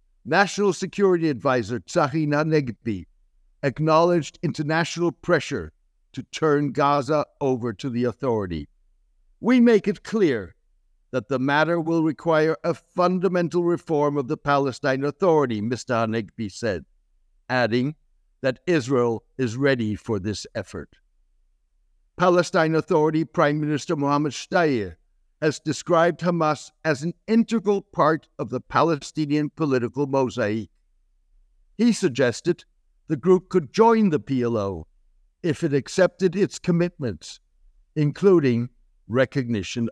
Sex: male